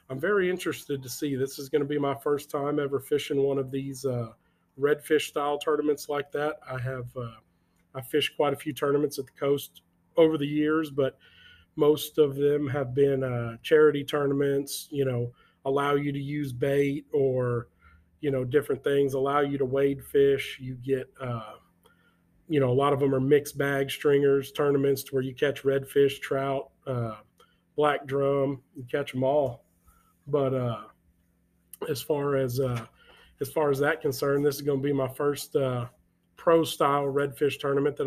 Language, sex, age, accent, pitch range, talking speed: English, male, 40-59, American, 130-145 Hz, 180 wpm